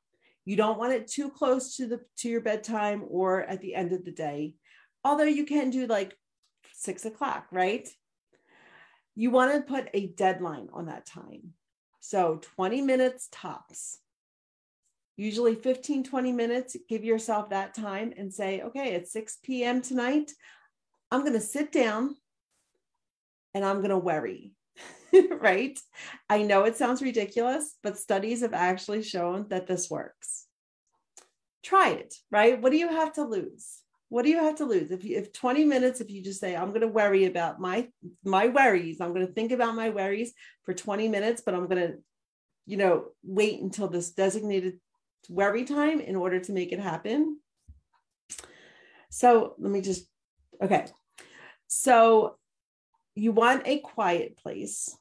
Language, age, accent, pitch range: English, 40-59, American, 195-260 Hz